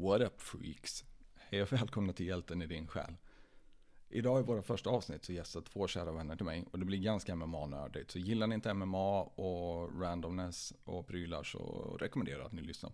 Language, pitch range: Swedish, 85-105 Hz